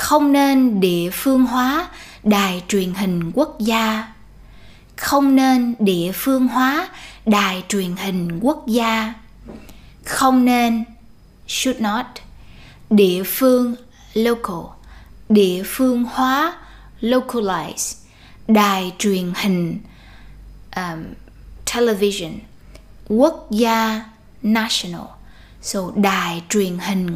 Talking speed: 95 wpm